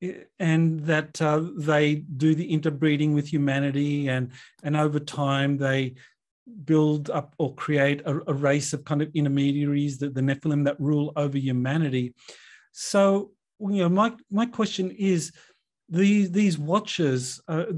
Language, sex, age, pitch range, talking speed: English, male, 40-59, 145-180 Hz, 145 wpm